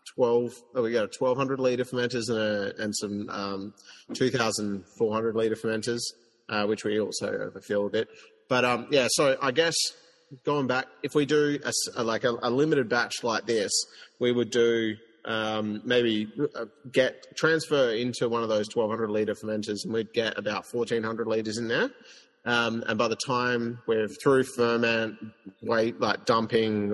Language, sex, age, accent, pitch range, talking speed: English, male, 30-49, Australian, 110-130 Hz, 165 wpm